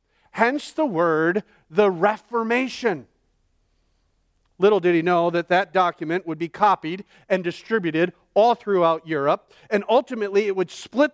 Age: 40-59